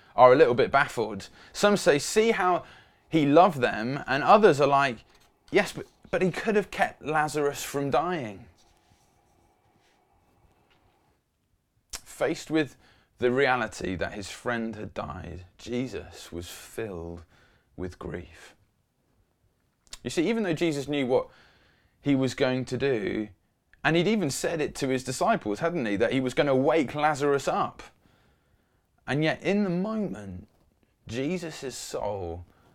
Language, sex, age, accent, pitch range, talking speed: English, male, 20-39, British, 90-140 Hz, 140 wpm